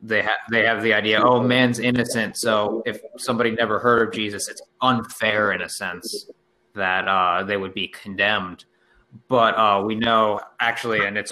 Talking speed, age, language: 180 wpm, 20-39, English